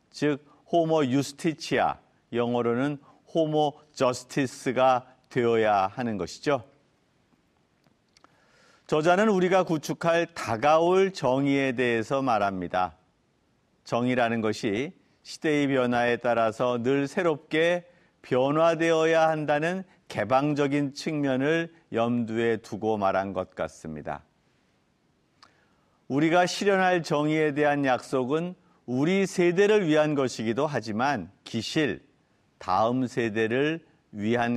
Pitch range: 120-155 Hz